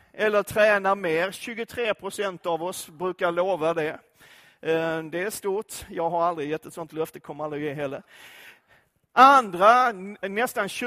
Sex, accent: male, native